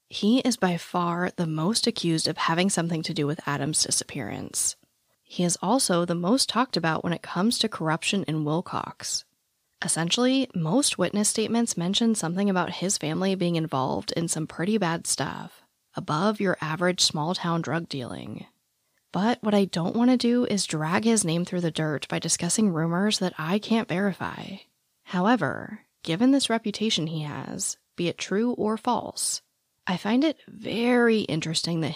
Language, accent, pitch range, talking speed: English, American, 160-215 Hz, 165 wpm